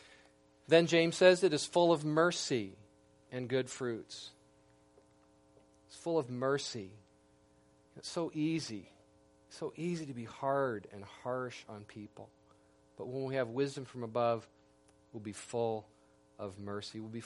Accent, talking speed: American, 145 wpm